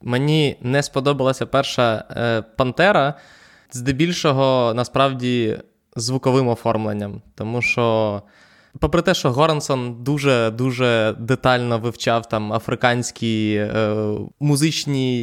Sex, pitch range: male, 120-145 Hz